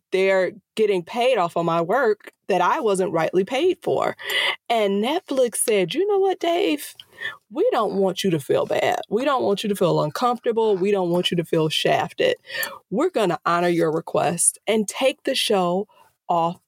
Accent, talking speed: American, 185 wpm